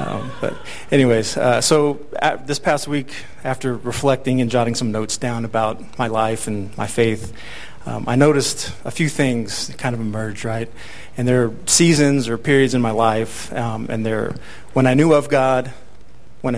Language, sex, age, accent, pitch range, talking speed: English, male, 40-59, American, 115-135 Hz, 180 wpm